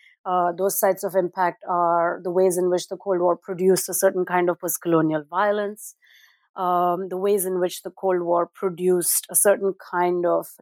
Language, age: English, 30-49